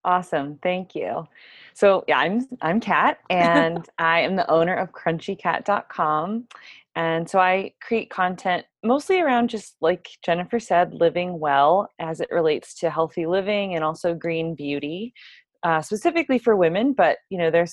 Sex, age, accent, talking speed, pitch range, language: female, 20-39, American, 155 wpm, 150-180 Hz, English